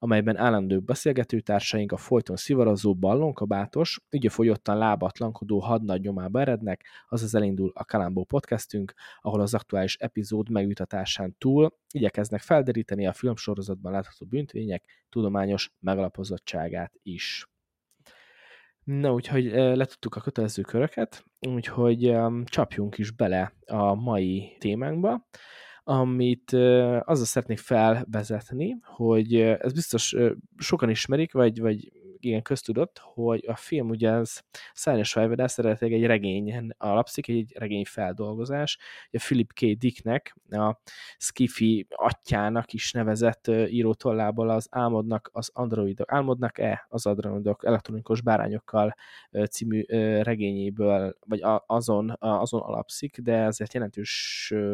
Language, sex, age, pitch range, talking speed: Hungarian, male, 20-39, 105-120 Hz, 115 wpm